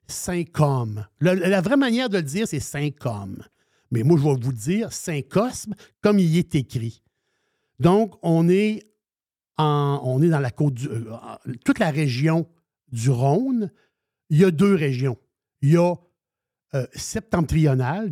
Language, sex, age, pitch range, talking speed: French, male, 60-79, 135-185 Hz, 170 wpm